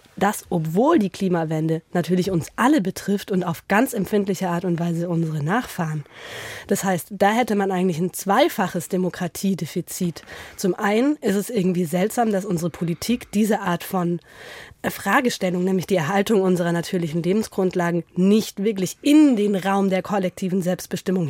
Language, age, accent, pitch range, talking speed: German, 20-39, German, 180-220 Hz, 150 wpm